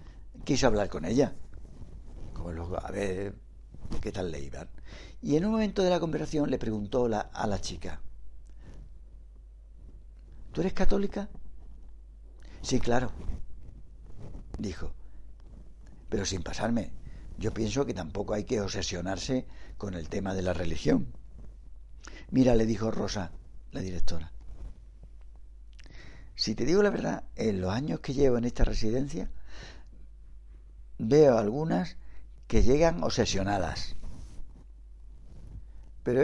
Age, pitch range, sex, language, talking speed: 60-79, 70-115 Hz, male, Spanish, 115 wpm